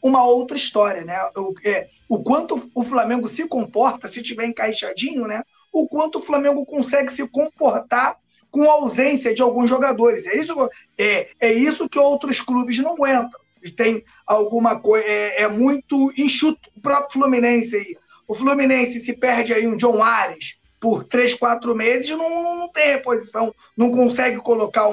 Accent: Brazilian